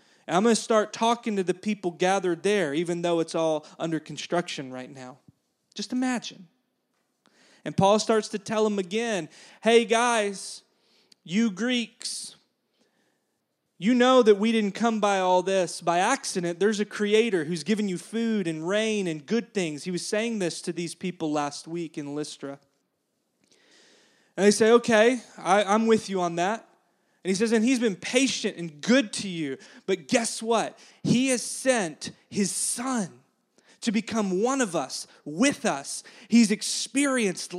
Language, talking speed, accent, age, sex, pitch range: English, 165 wpm, American, 30-49, male, 185-235 Hz